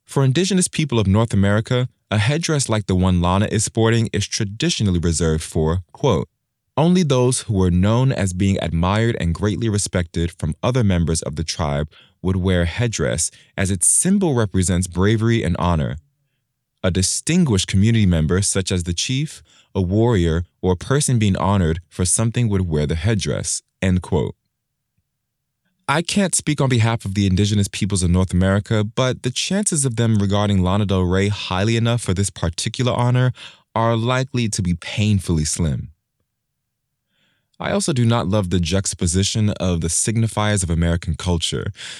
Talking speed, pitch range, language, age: 165 wpm, 90-120 Hz, English, 20-39